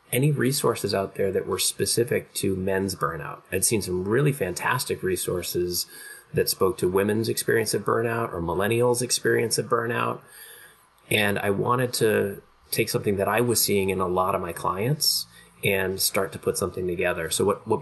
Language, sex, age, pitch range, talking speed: English, male, 30-49, 90-115 Hz, 180 wpm